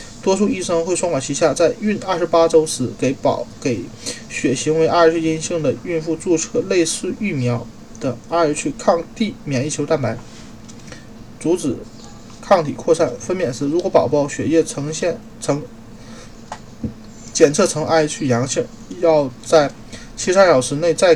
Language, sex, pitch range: Chinese, male, 140-180 Hz